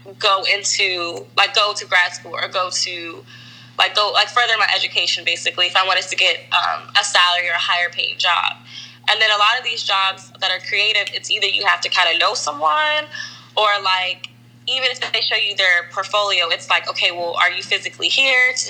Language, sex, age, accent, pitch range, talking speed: English, female, 10-29, American, 175-215 Hz, 215 wpm